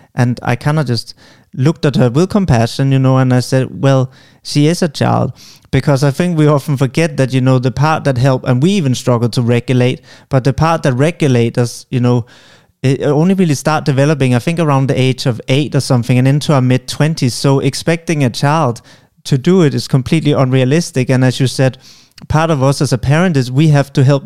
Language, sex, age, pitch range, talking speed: English, male, 30-49, 125-145 Hz, 220 wpm